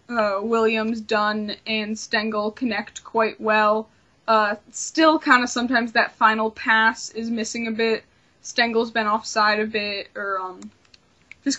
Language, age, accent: English, 20-39, American